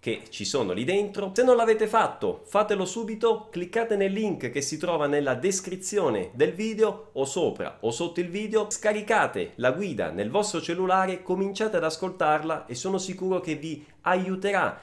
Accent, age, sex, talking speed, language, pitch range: native, 30-49, male, 170 wpm, Italian, 170-225 Hz